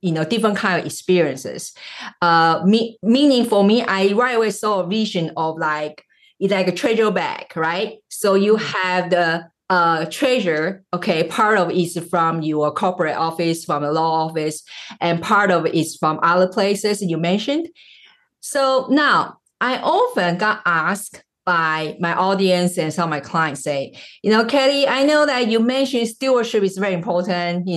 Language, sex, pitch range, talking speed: English, female, 170-265 Hz, 175 wpm